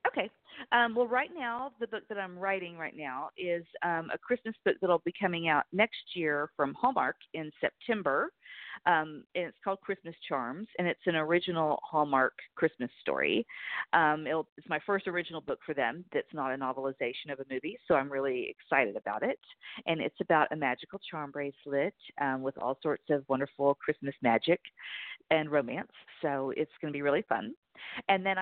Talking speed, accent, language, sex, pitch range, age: 185 wpm, American, English, female, 150-190 Hz, 40-59